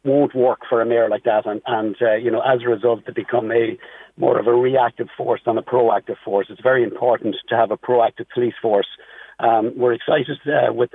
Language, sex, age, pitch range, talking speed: English, male, 50-69, 110-125 Hz, 225 wpm